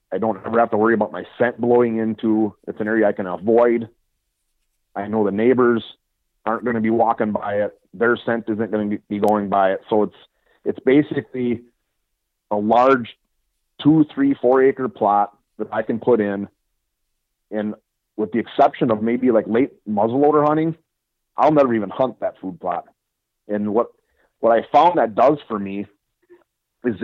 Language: English